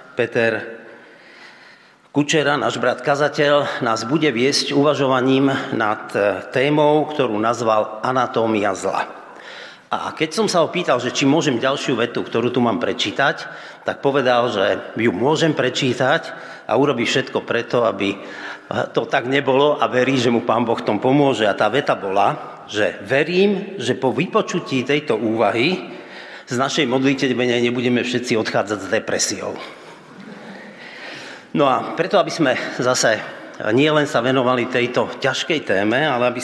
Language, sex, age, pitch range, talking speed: Slovak, male, 50-69, 115-145 Hz, 140 wpm